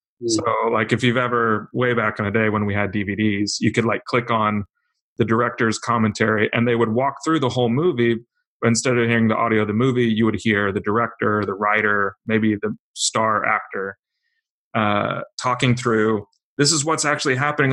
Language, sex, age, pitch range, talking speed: English, male, 30-49, 110-130 Hz, 195 wpm